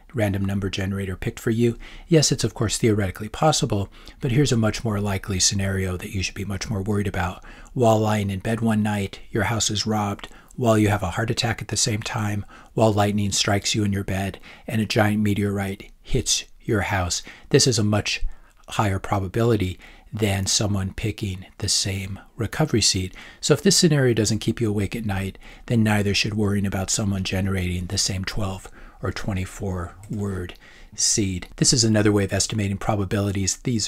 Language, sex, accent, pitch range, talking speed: English, male, American, 100-110 Hz, 185 wpm